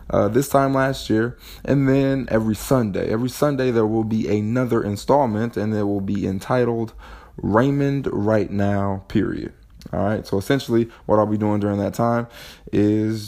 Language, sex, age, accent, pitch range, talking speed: English, male, 20-39, American, 105-135 Hz, 165 wpm